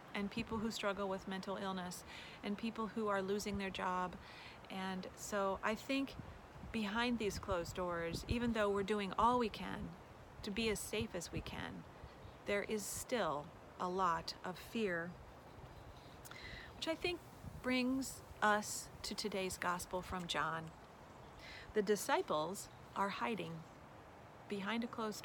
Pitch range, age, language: 180-220 Hz, 40-59, English